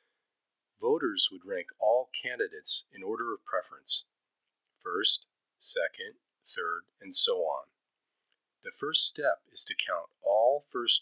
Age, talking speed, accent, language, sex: 40-59, 125 wpm, American, English, male